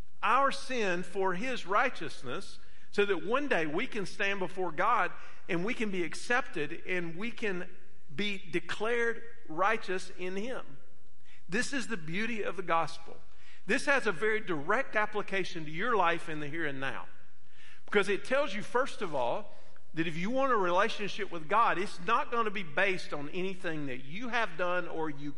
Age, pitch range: 50-69, 145-215 Hz